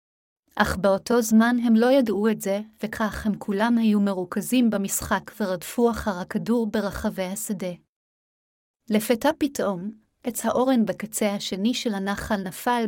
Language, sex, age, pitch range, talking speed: Hebrew, female, 30-49, 200-235 Hz, 130 wpm